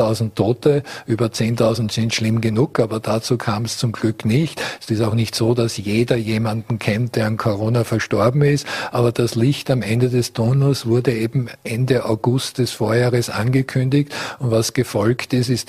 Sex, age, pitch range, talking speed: male, 50-69, 110-130 Hz, 175 wpm